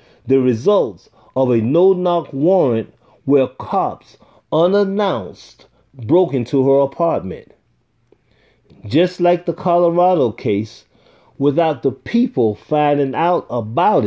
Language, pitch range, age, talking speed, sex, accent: English, 120-175 Hz, 40-59, 100 wpm, male, American